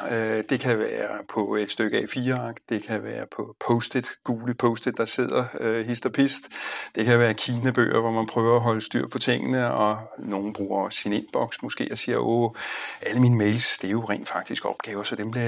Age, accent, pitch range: 60-79, native, 110-130 Hz